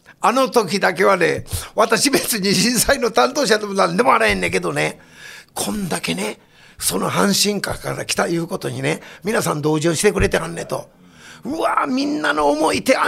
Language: Japanese